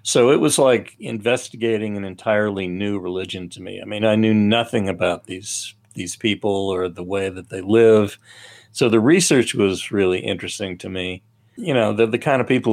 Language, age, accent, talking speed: English, 50-69, American, 195 wpm